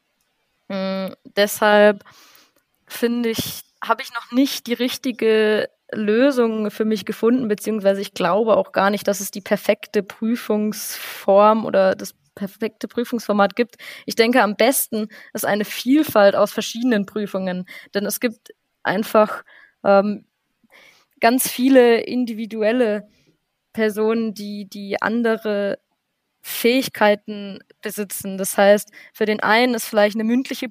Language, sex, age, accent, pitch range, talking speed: German, female, 20-39, German, 205-240 Hz, 125 wpm